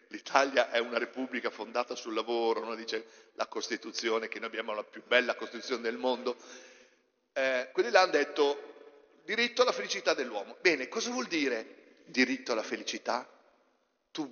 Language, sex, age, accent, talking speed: Italian, male, 50-69, native, 155 wpm